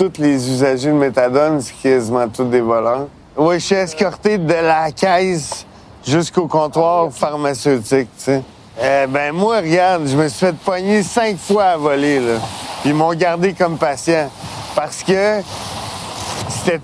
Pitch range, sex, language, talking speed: 115-160 Hz, male, French, 160 wpm